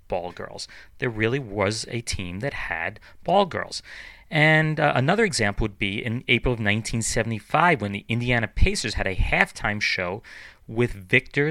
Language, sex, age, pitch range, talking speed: English, male, 30-49, 95-135 Hz, 160 wpm